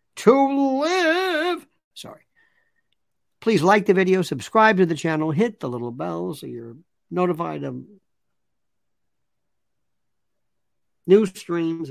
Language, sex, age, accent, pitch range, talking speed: English, male, 60-79, American, 160-220 Hz, 105 wpm